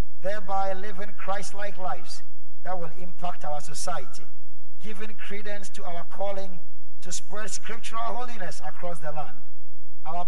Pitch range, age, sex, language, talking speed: 180-195 Hz, 50-69, male, English, 130 wpm